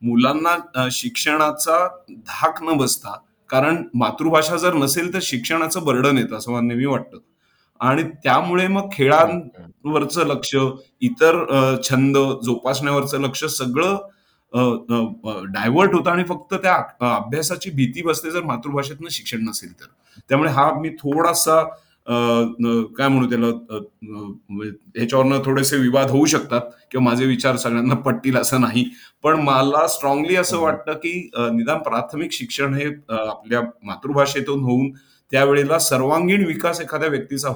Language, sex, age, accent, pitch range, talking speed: Marathi, male, 30-49, native, 120-155 Hz, 125 wpm